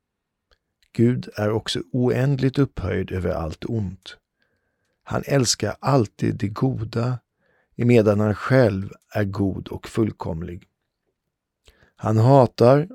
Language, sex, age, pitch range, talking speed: Swedish, male, 50-69, 95-120 Hz, 100 wpm